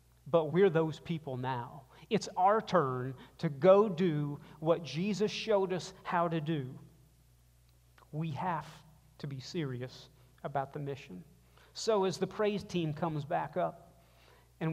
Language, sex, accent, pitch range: English, male, American, 135-185 Hz